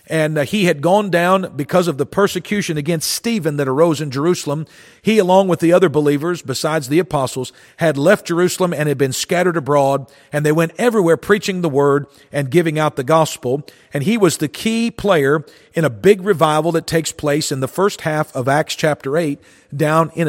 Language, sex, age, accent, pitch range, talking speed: English, male, 50-69, American, 145-190 Hz, 200 wpm